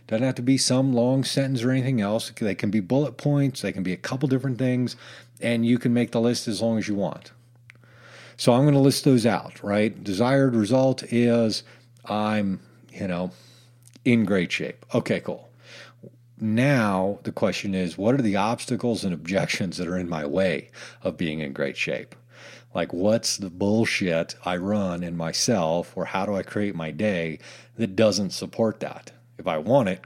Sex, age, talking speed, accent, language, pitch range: male, 40-59, 190 wpm, American, English, 95-120 Hz